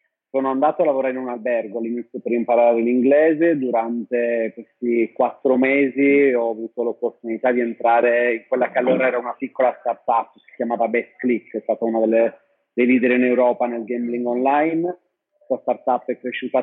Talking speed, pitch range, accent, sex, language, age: 175 wpm, 115-130 Hz, native, male, Italian, 30-49